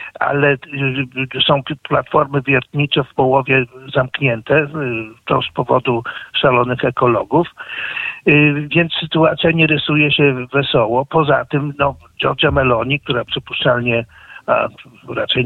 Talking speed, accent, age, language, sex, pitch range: 105 wpm, native, 50-69, Polish, male, 125-140 Hz